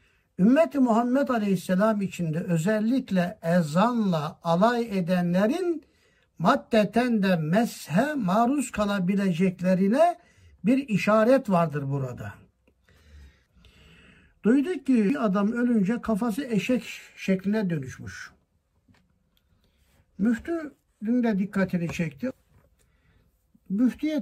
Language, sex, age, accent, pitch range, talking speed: Turkish, male, 60-79, native, 160-225 Hz, 75 wpm